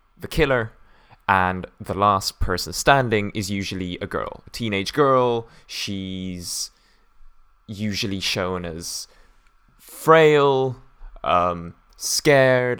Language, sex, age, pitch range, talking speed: English, male, 20-39, 90-115 Hz, 100 wpm